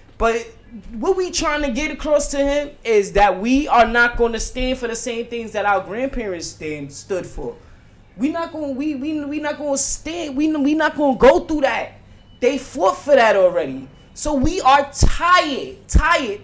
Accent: American